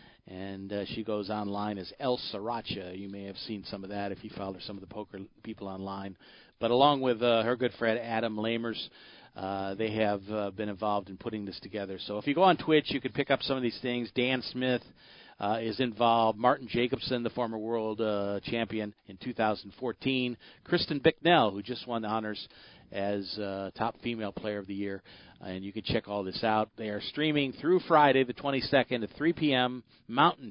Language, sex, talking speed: English, male, 205 wpm